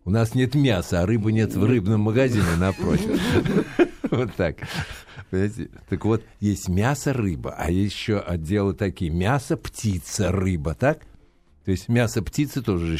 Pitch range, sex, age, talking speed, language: 85-110 Hz, male, 60-79, 150 wpm, Russian